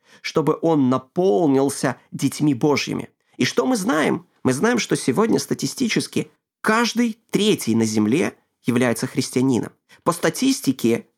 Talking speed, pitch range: 120 wpm, 135-210 Hz